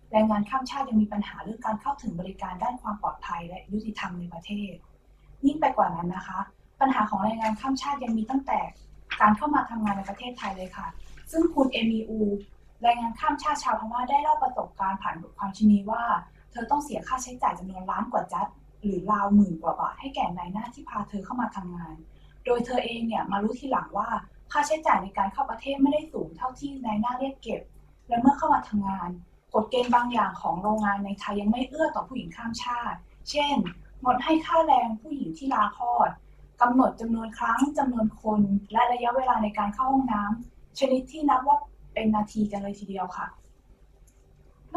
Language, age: Thai, 20-39